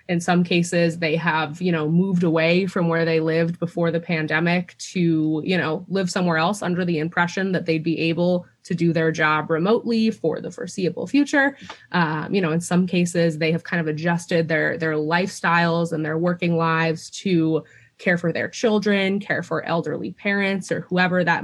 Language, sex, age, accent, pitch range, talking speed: English, female, 20-39, American, 165-185 Hz, 190 wpm